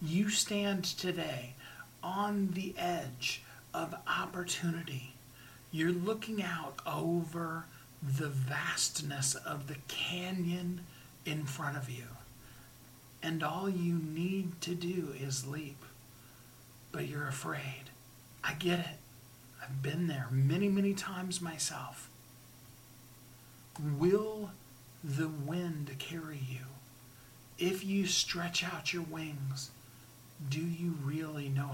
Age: 40-59